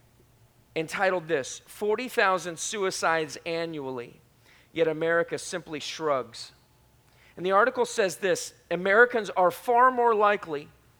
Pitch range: 135-195 Hz